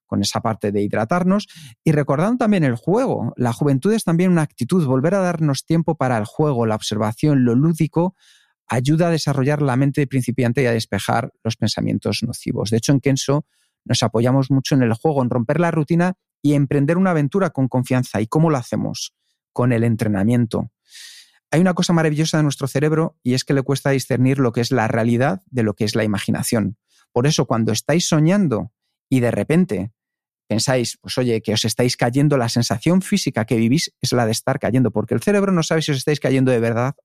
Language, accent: Spanish, Spanish